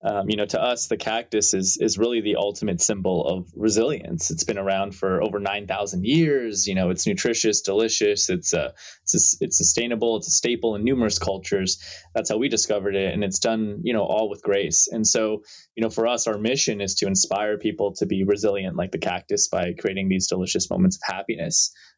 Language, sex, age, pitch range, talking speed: English, male, 20-39, 95-115 Hz, 215 wpm